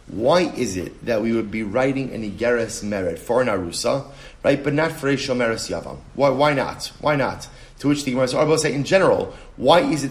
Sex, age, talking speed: male, 30-49, 225 wpm